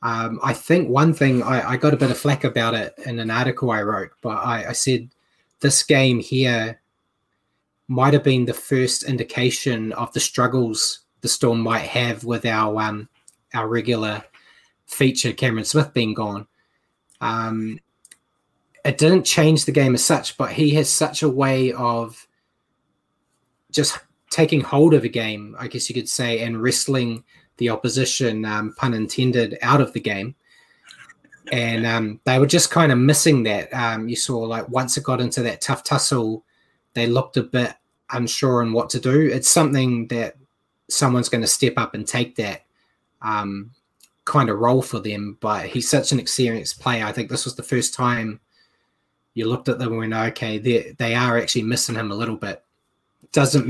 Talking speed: 180 wpm